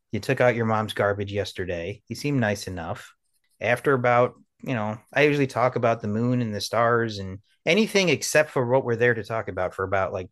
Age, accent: 30-49, American